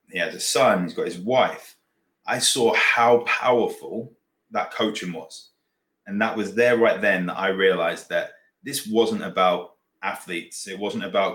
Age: 20-39